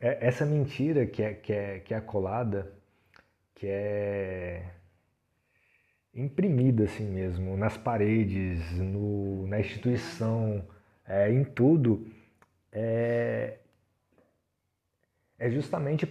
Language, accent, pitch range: Portuguese, Brazilian, 95-115 Hz